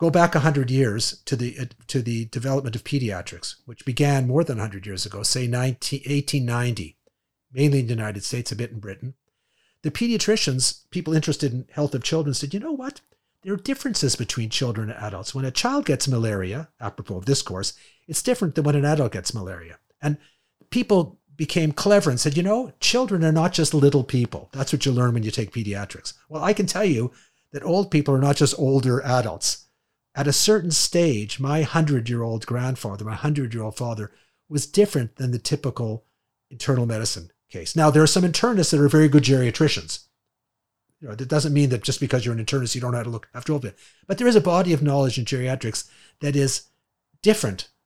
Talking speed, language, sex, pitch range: 205 wpm, Hebrew, male, 115-150 Hz